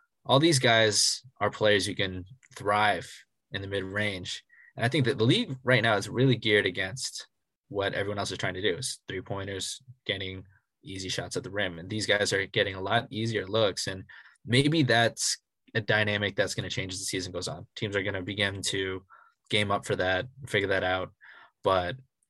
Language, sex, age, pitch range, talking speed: English, male, 20-39, 100-130 Hz, 200 wpm